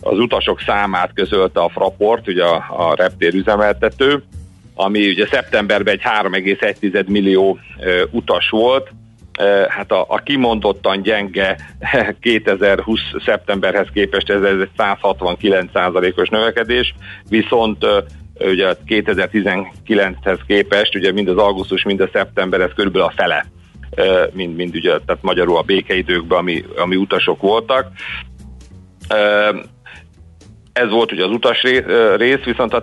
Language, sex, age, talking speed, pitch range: Hungarian, male, 50-69, 130 wpm, 90-110 Hz